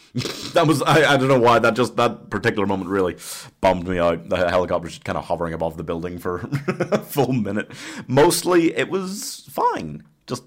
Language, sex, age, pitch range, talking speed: English, male, 30-49, 85-125 Hz, 195 wpm